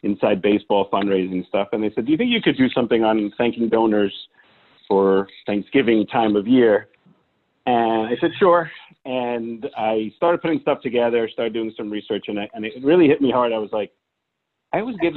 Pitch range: 110-135 Hz